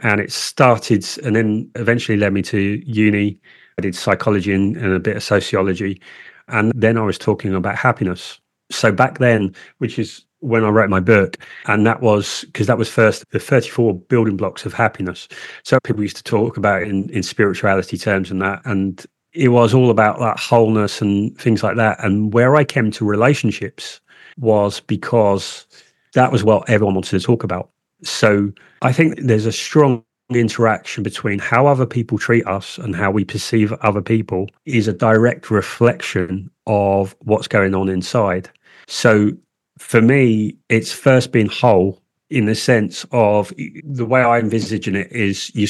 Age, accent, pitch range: 30-49, British, 100-115 Hz